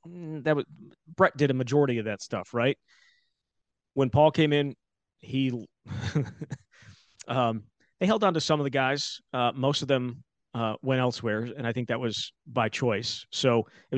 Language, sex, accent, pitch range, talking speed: English, male, American, 115-140 Hz, 170 wpm